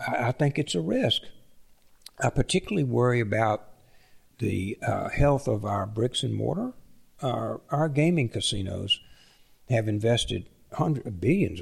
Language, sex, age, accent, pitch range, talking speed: English, male, 60-79, American, 100-125 Hz, 125 wpm